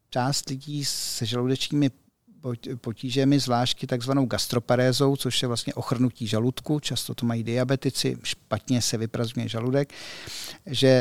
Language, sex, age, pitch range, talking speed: Czech, male, 50-69, 120-140 Hz, 120 wpm